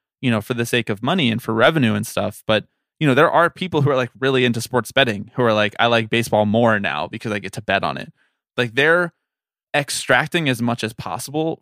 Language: English